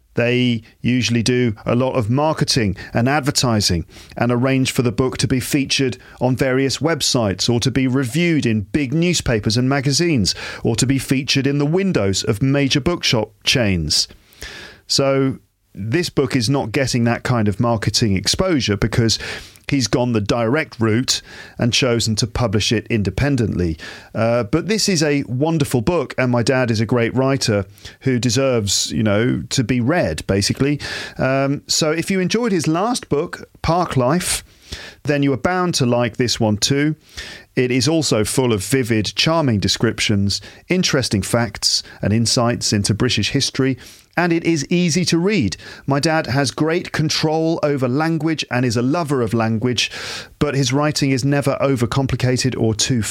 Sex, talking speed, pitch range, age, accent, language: male, 165 wpm, 110-145 Hz, 40-59, British, English